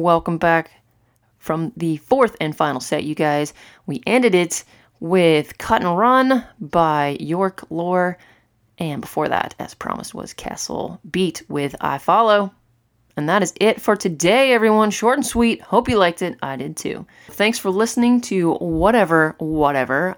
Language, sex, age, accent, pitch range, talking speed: English, female, 30-49, American, 160-205 Hz, 160 wpm